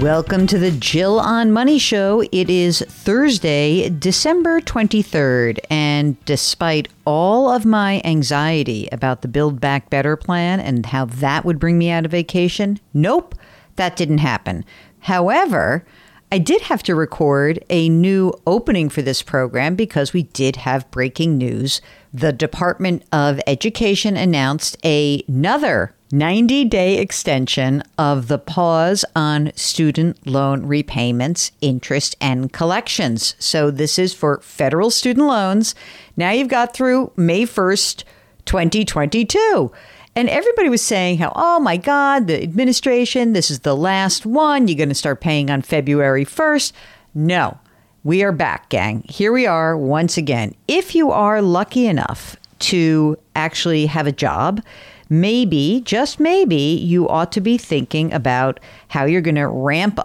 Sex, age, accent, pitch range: female, 50-69, American, 145-205 Hz